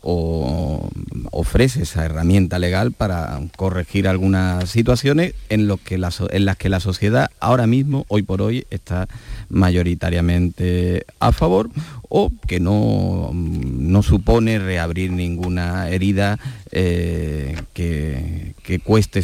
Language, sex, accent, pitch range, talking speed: Spanish, male, Spanish, 85-110 Hz, 110 wpm